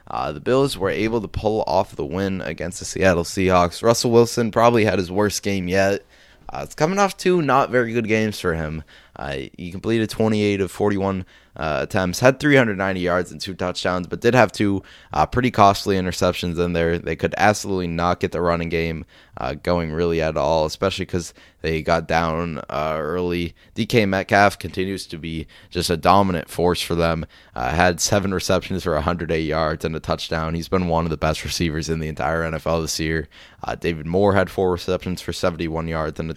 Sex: male